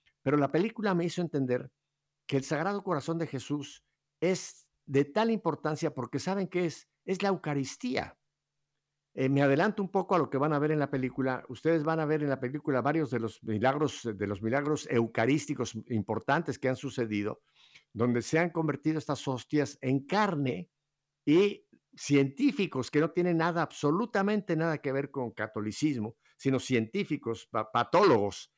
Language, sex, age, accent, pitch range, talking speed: Spanish, male, 50-69, Mexican, 130-165 Hz, 165 wpm